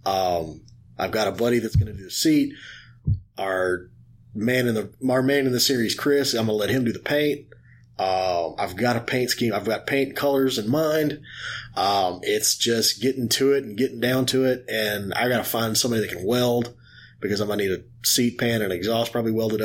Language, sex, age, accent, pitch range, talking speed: English, male, 30-49, American, 115-140 Hz, 225 wpm